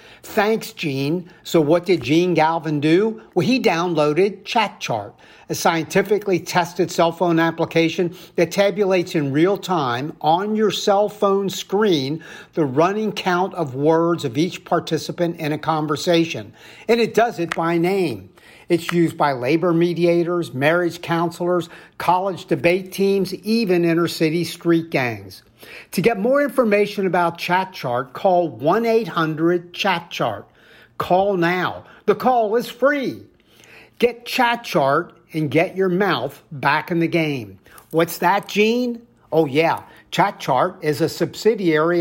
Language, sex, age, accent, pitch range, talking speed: English, male, 50-69, American, 165-200 Hz, 135 wpm